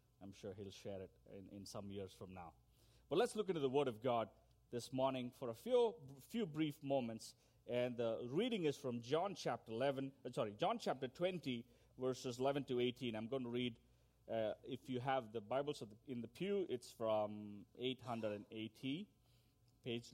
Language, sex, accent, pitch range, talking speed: English, male, Indian, 115-155 Hz, 185 wpm